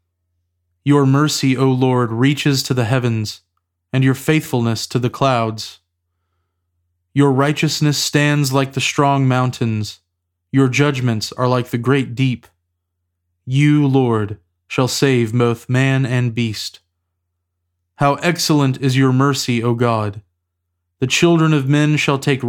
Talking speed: 130 wpm